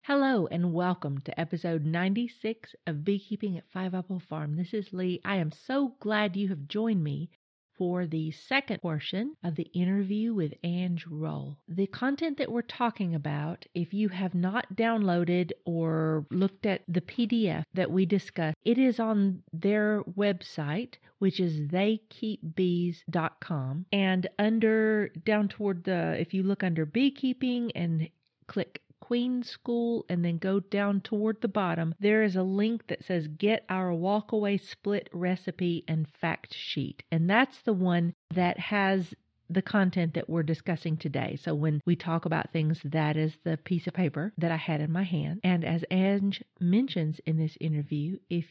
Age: 50-69